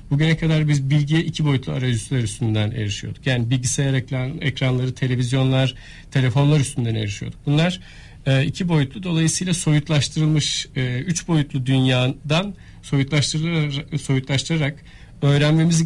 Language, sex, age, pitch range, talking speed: Turkish, male, 40-59, 125-150 Hz, 100 wpm